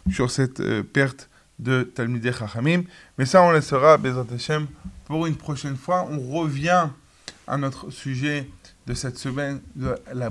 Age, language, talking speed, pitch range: 20-39, French, 165 wpm, 125-160 Hz